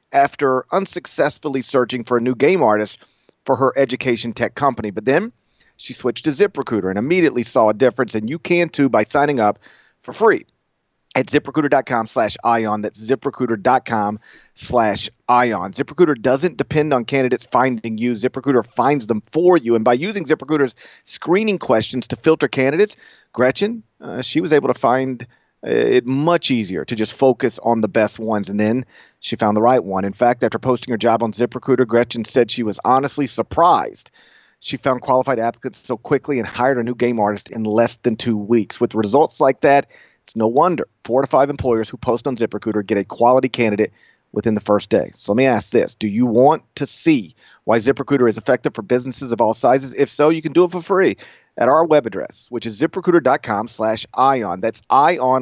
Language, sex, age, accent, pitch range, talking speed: English, male, 40-59, American, 115-140 Hz, 195 wpm